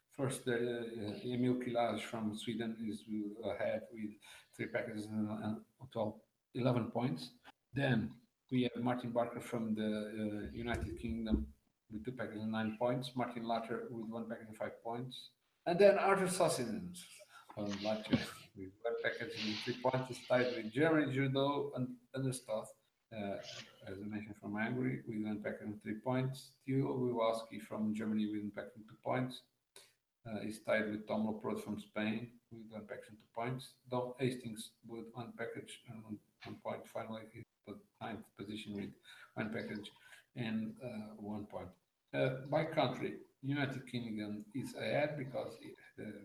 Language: English